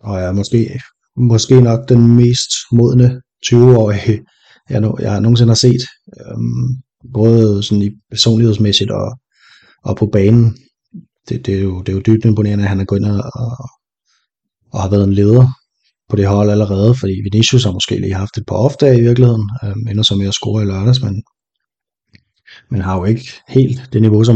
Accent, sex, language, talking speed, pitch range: native, male, Danish, 185 wpm, 100-120 Hz